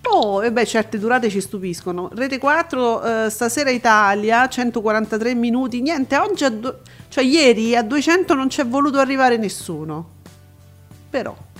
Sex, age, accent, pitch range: female, 40-59, native, 195-250 Hz